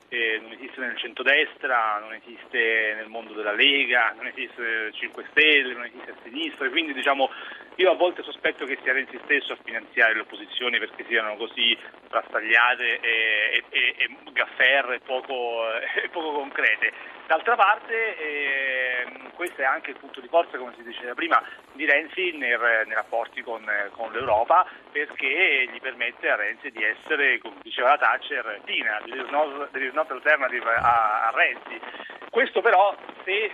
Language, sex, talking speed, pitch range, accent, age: Italian, male, 165 wpm, 135-215 Hz, native, 40-59